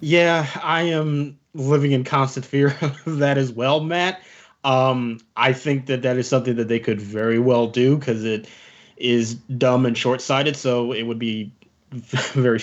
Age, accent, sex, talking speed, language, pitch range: 20-39, American, male, 170 wpm, English, 125-165 Hz